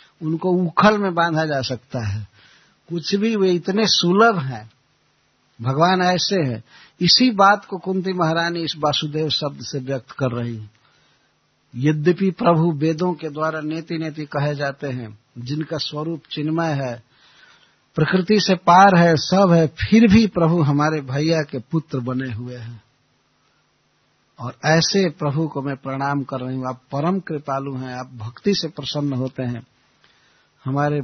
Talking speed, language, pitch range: 155 wpm, Hindi, 135-175 Hz